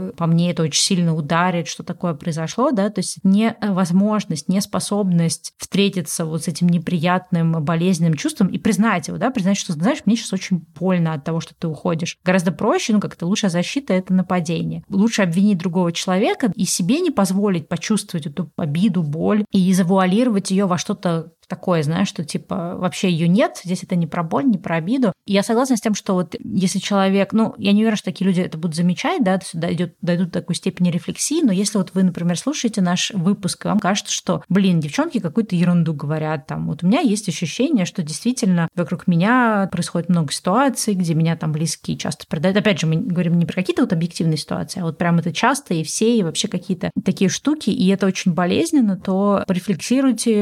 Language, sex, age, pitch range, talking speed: Russian, female, 20-39, 170-205 Hz, 200 wpm